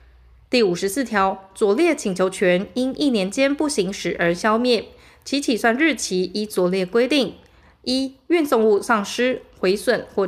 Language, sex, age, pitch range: Chinese, female, 20-39, 190-265 Hz